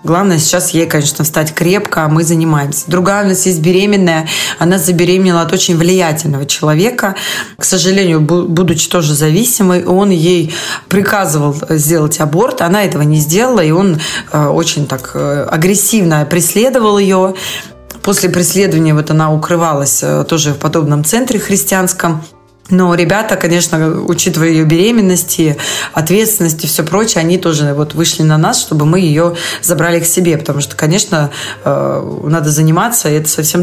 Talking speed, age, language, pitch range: 145 wpm, 20-39, Russian, 155-185 Hz